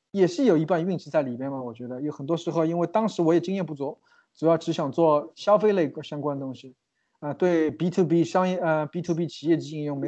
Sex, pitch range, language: male, 145-180 Hz, Chinese